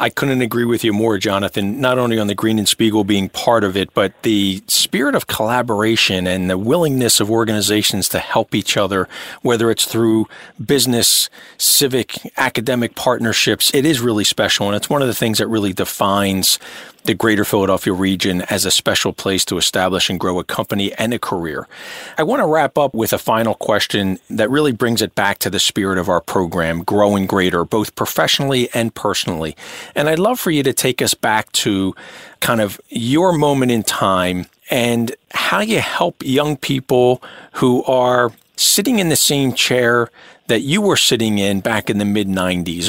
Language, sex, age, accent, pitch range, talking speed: English, male, 40-59, American, 100-125 Hz, 185 wpm